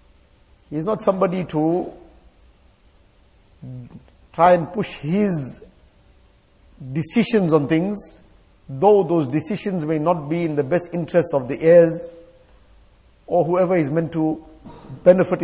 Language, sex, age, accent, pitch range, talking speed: English, male, 50-69, Indian, 145-180 Hz, 120 wpm